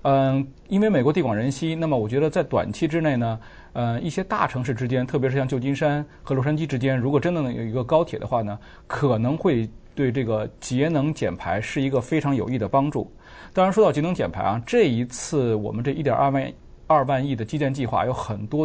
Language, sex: Chinese, male